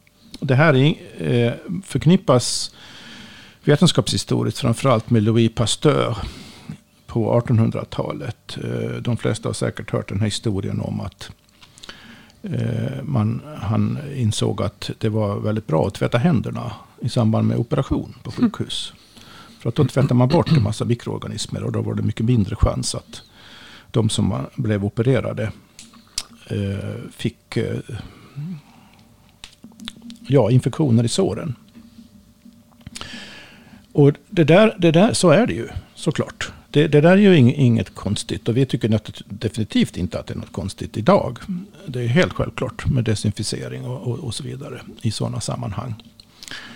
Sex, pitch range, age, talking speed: male, 110-140 Hz, 50-69, 130 wpm